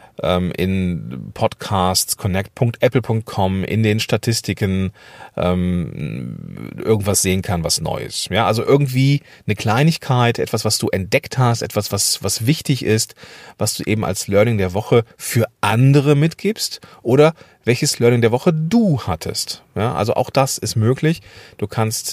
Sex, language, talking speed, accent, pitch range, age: male, German, 140 wpm, German, 95-125 Hz, 40-59